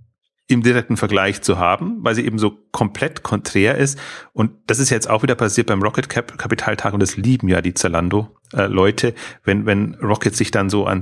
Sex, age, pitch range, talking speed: male, 30-49, 100-120 Hz, 200 wpm